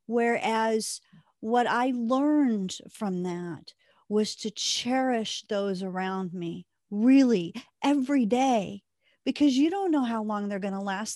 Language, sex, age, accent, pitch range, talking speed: English, female, 50-69, American, 200-260 Hz, 135 wpm